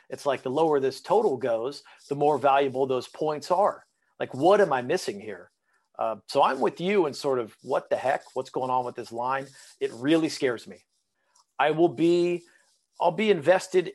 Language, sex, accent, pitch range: English, male, American, 125-160 Hz